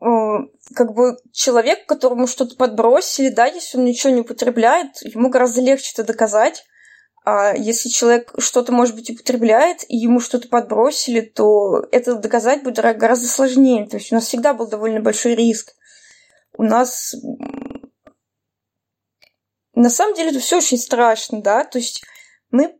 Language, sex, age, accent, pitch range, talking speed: Russian, female, 20-39, native, 230-270 Hz, 145 wpm